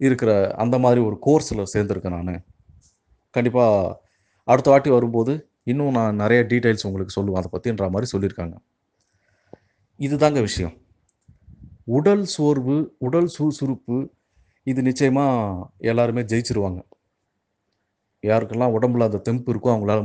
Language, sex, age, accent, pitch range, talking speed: Tamil, male, 30-49, native, 100-125 Hz, 115 wpm